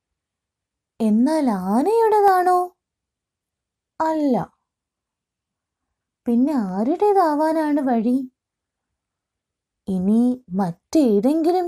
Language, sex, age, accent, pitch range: Malayalam, female, 20-39, native, 200-310 Hz